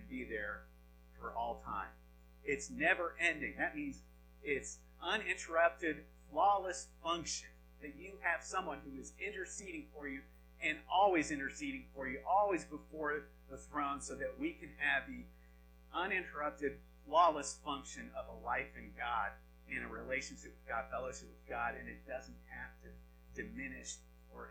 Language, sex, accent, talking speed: English, male, American, 150 wpm